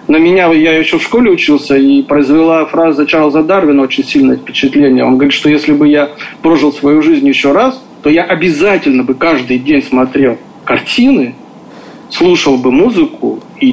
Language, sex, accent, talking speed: Russian, male, native, 165 wpm